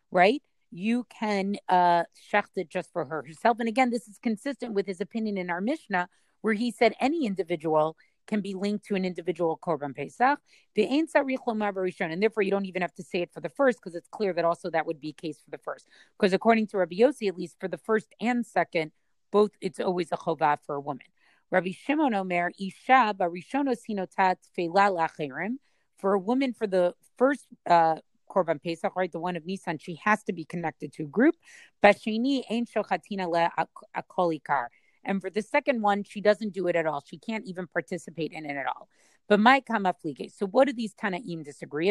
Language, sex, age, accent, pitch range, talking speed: English, female, 30-49, American, 175-220 Hz, 180 wpm